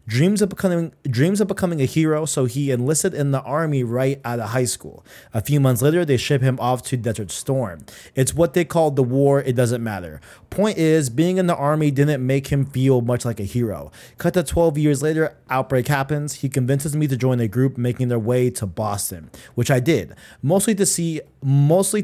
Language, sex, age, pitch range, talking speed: English, male, 20-39, 120-155 Hz, 215 wpm